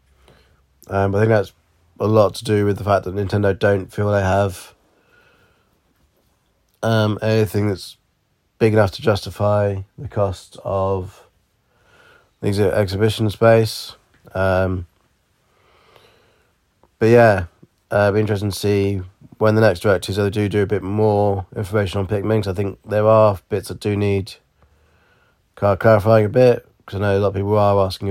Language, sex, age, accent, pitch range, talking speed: English, male, 20-39, British, 95-110 Hz, 150 wpm